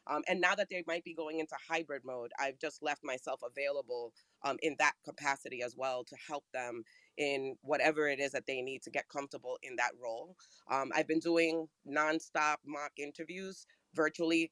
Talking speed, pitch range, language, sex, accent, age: 190 wpm, 145-175 Hz, English, female, American, 30-49